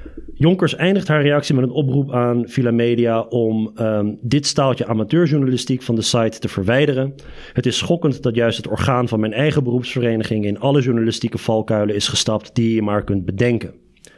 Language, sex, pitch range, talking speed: Dutch, male, 110-135 Hz, 180 wpm